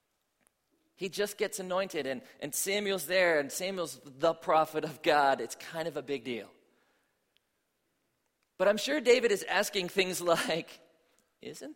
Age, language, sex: 40-59, English, male